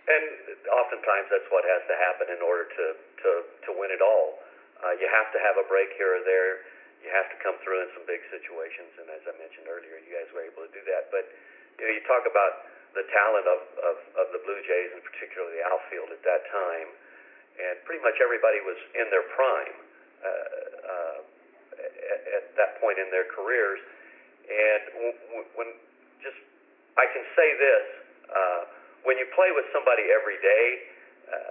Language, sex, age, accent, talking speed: English, male, 50-69, American, 190 wpm